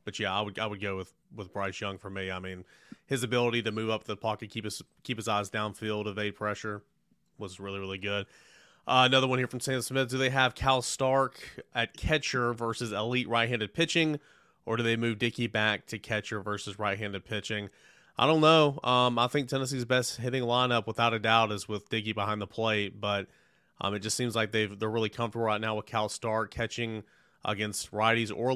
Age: 30-49